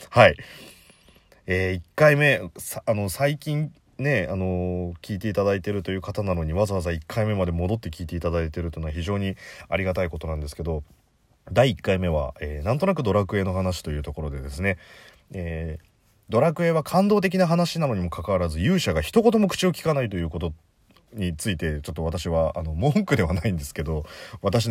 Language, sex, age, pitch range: Japanese, male, 30-49, 85-135 Hz